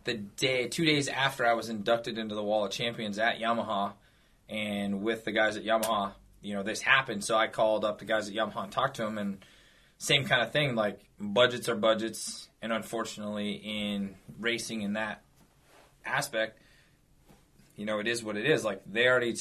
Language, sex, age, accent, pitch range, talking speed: English, male, 20-39, American, 105-120 Hz, 195 wpm